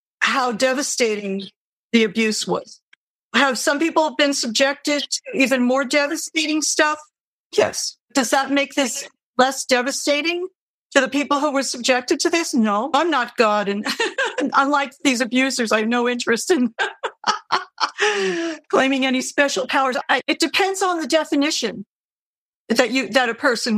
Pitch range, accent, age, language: 230-285 Hz, American, 60-79, English